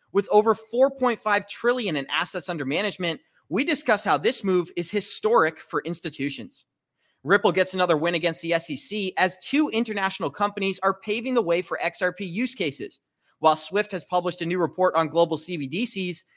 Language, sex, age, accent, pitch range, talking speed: English, male, 30-49, American, 165-225 Hz, 170 wpm